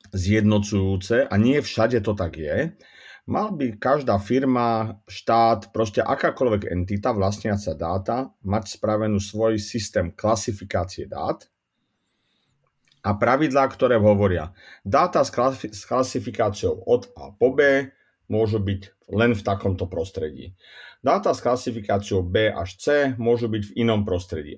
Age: 40-59